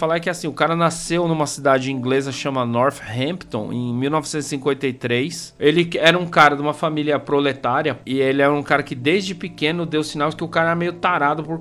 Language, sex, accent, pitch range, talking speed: Portuguese, male, Brazilian, 130-165 Hz, 200 wpm